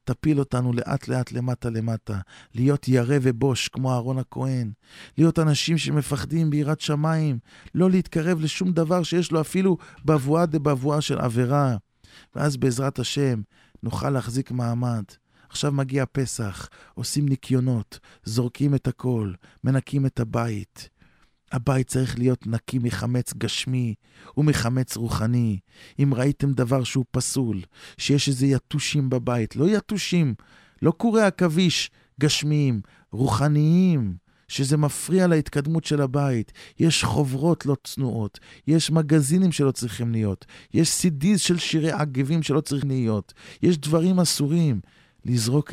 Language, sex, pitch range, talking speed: English, male, 120-150 Hz, 125 wpm